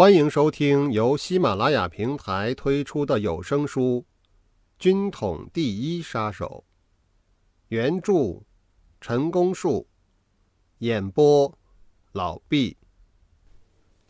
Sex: male